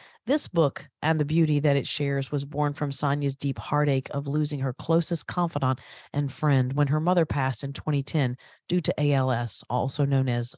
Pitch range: 140-170 Hz